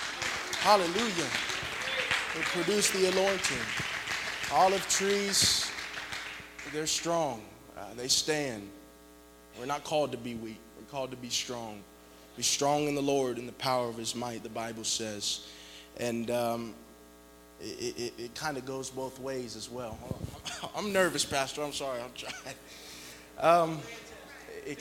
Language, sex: English, male